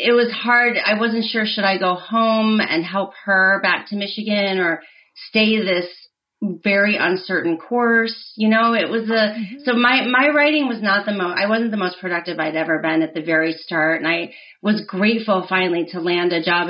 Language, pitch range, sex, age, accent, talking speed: English, 175-220 Hz, female, 30-49, American, 200 wpm